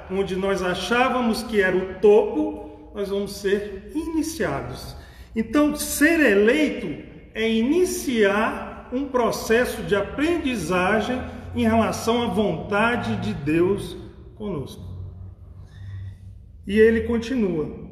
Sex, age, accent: male, 40-59, Brazilian